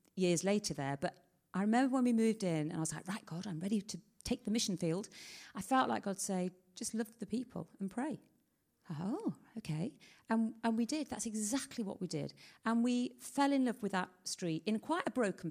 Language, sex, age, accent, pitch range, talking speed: Danish, female, 40-59, British, 180-240 Hz, 220 wpm